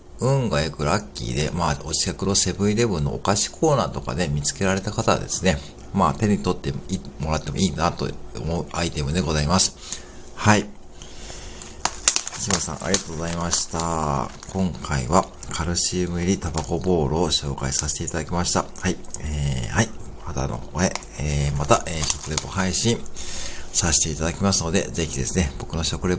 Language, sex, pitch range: Japanese, male, 75-95 Hz